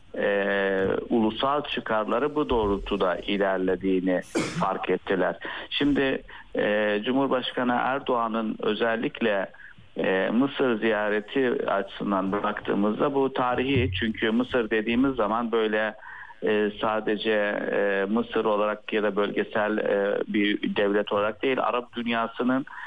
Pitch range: 105-130 Hz